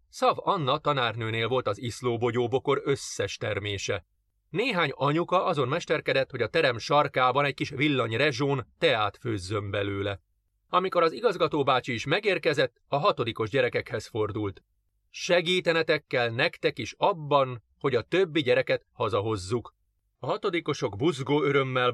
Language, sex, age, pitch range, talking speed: Hungarian, male, 30-49, 110-160 Hz, 125 wpm